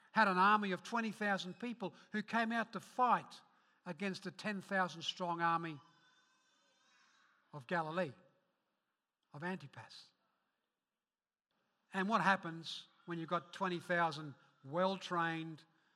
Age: 60-79